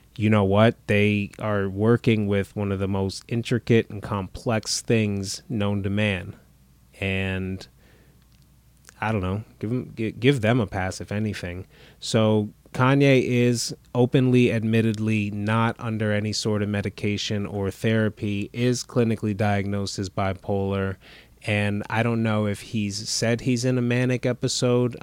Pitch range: 100-120 Hz